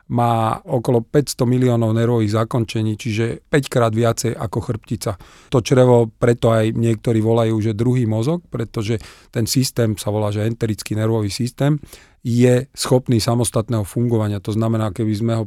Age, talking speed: 40-59, 145 wpm